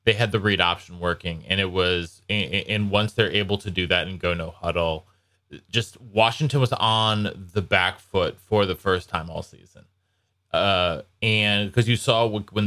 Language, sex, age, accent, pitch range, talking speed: English, male, 20-39, American, 95-110 Hz, 190 wpm